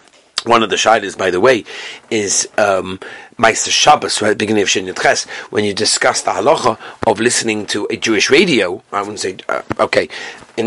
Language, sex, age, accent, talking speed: English, male, 40-59, British, 190 wpm